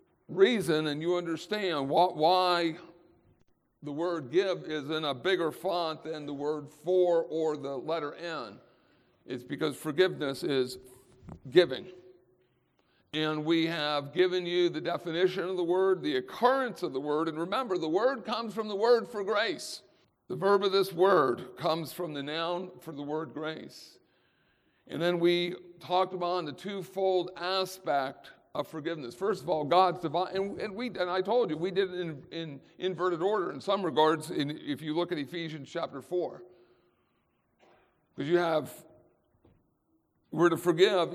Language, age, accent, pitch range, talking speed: English, 50-69, American, 155-185 Hz, 160 wpm